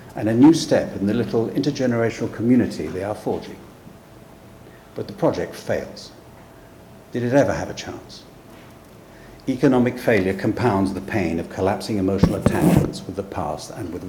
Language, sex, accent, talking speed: English, male, British, 155 wpm